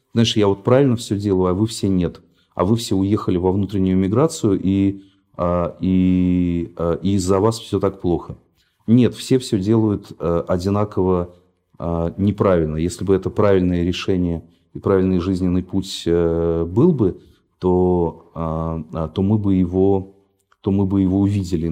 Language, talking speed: Russian, 135 wpm